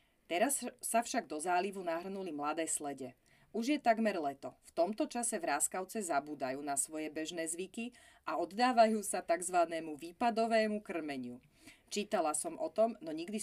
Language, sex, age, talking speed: Slovak, female, 30-49, 150 wpm